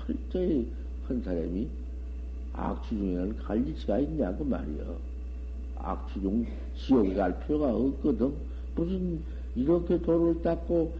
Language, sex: Korean, male